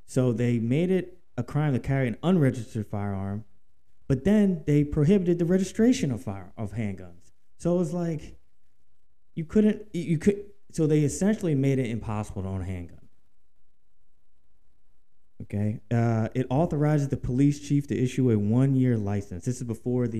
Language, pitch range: English, 95-135 Hz